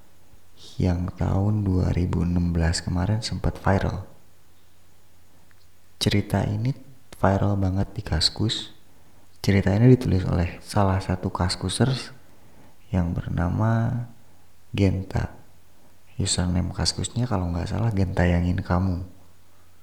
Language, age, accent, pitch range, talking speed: Indonesian, 30-49, native, 90-105 Hz, 90 wpm